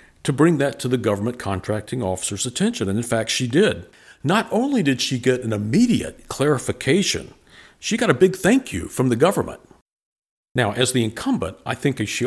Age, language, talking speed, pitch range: 50-69, English, 185 wpm, 105-145 Hz